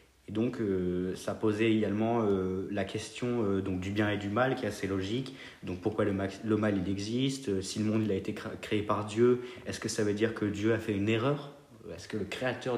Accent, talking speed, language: French, 220 wpm, French